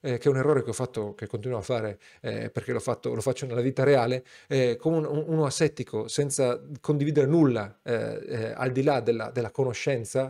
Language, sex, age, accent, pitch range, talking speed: Italian, male, 40-59, native, 130-185 Hz, 210 wpm